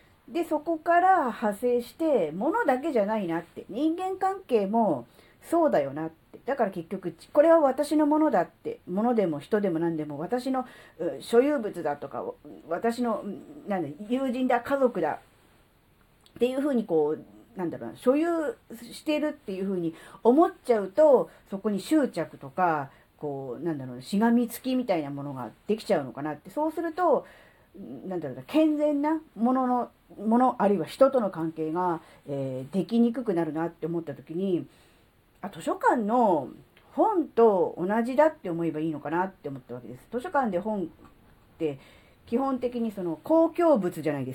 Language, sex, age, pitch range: Japanese, female, 40-59, 160-270 Hz